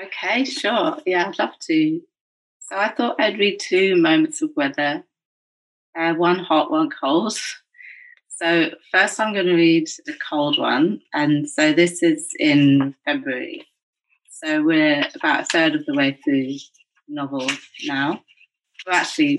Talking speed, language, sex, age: 150 wpm, English, female, 30-49